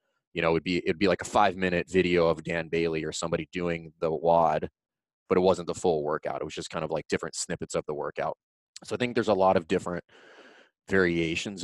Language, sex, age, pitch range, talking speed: English, male, 30-49, 85-105 Hz, 225 wpm